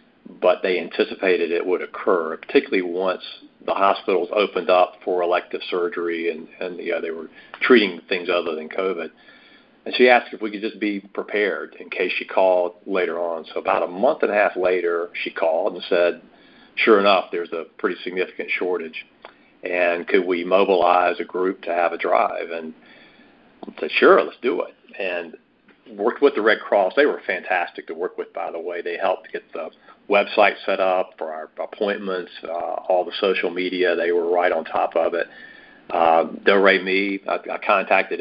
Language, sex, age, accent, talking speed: English, male, 40-59, American, 185 wpm